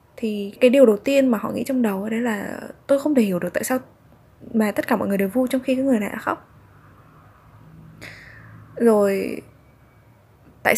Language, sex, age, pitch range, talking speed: Vietnamese, female, 10-29, 185-245 Hz, 195 wpm